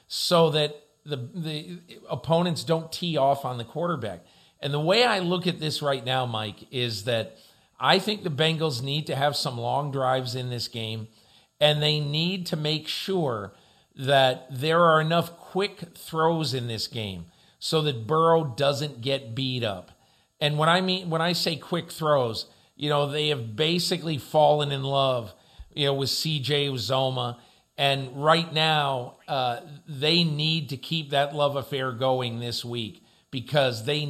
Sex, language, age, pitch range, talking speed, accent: male, English, 50-69, 130-160 Hz, 170 wpm, American